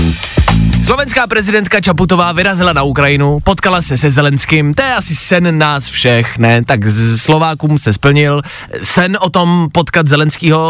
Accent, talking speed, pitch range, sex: native, 150 wpm, 120-180 Hz, male